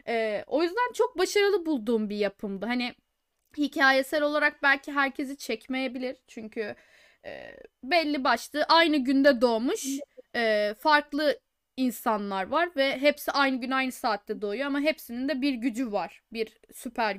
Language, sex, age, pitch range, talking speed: Turkish, female, 10-29, 235-315 Hz, 140 wpm